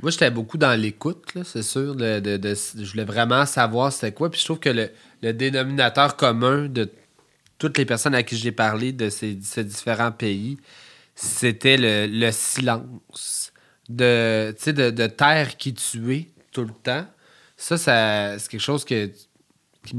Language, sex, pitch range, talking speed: French, male, 110-130 Hz, 175 wpm